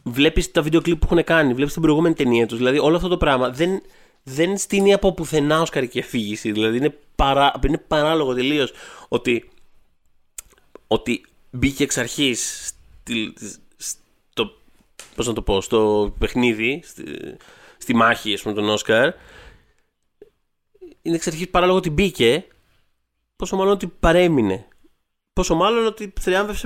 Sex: male